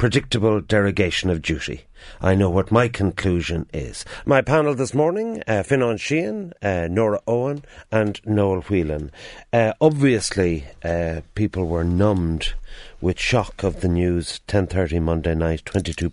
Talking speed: 140 wpm